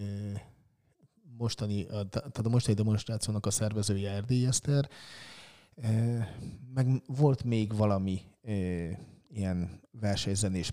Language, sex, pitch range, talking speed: Hungarian, male, 100-120 Hz, 90 wpm